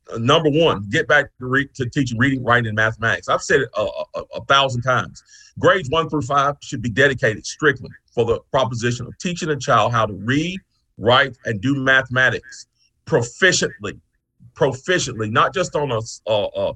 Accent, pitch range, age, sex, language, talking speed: American, 115-140 Hz, 40-59, male, English, 170 wpm